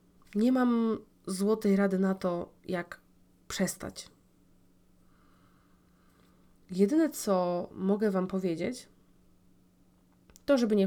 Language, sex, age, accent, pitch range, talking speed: Polish, female, 20-39, native, 190-230 Hz, 90 wpm